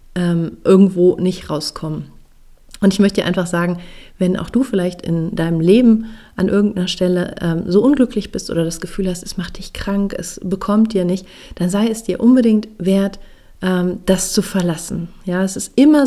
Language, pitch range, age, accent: German, 175-200 Hz, 40-59, German